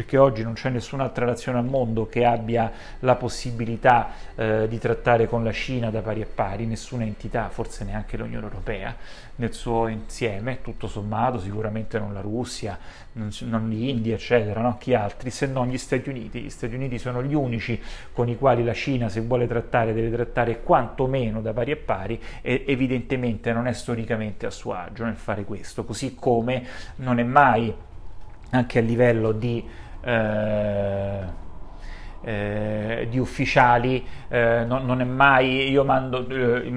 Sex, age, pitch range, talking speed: male, 30-49, 110-125 Hz, 165 wpm